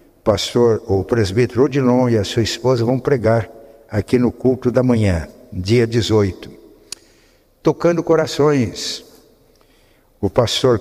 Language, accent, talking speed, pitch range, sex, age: Portuguese, Brazilian, 115 wpm, 115-150 Hz, male, 60-79